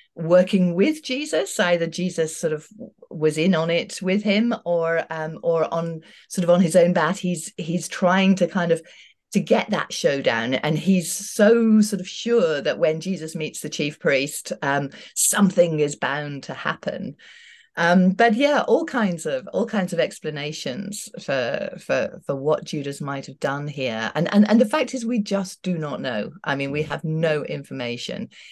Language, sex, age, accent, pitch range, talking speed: English, female, 40-59, British, 145-205 Hz, 185 wpm